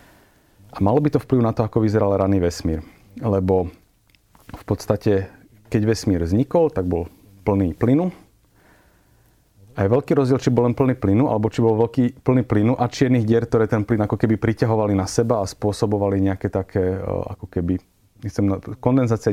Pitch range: 100-120 Hz